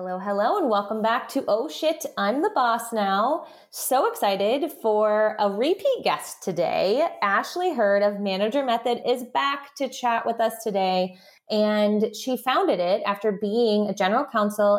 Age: 20-39